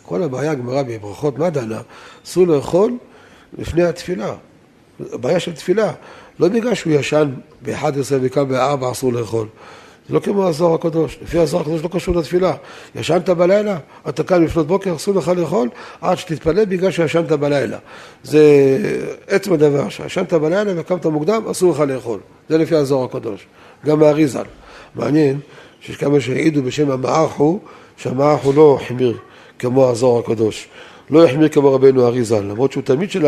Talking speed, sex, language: 140 wpm, male, Hebrew